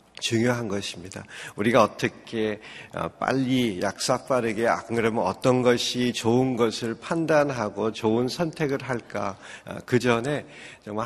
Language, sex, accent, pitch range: Korean, male, native, 115-150 Hz